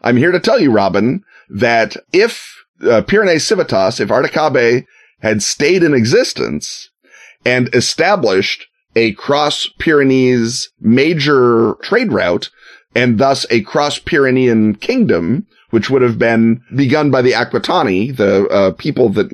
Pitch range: 105-135 Hz